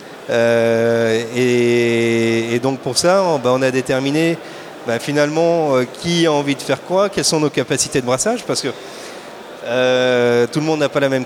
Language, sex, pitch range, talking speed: French, male, 125-155 Hz, 185 wpm